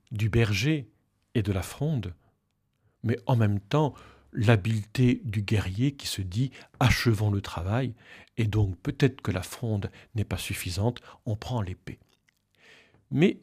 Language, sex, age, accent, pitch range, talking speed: French, male, 50-69, French, 105-130 Hz, 145 wpm